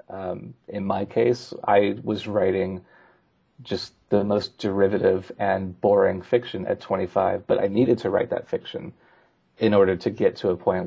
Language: English